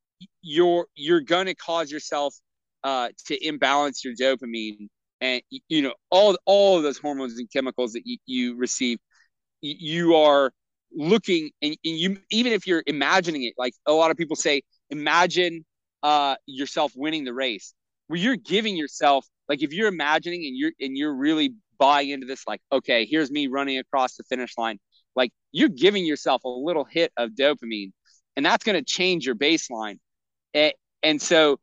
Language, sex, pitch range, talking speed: English, male, 130-170 Hz, 170 wpm